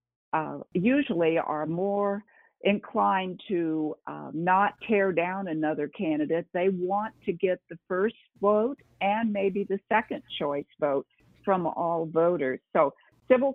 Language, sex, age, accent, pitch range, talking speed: English, female, 50-69, American, 155-200 Hz, 135 wpm